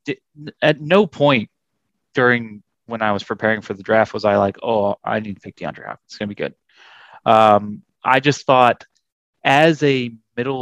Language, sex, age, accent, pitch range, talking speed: English, male, 30-49, American, 105-130 Hz, 185 wpm